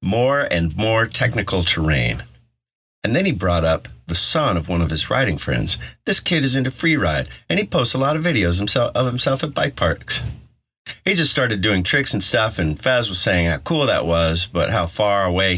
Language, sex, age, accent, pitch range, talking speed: English, male, 50-69, American, 80-115 Hz, 210 wpm